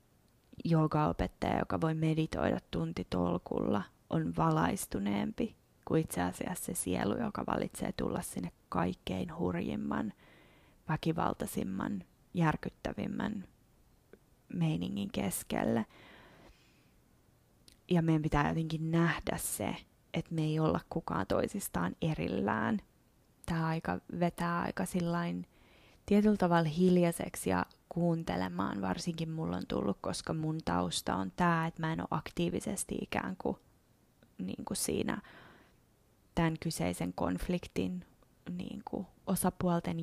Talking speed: 105 wpm